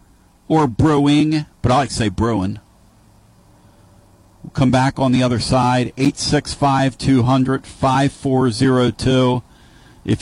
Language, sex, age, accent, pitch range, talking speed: English, male, 50-69, American, 110-170 Hz, 145 wpm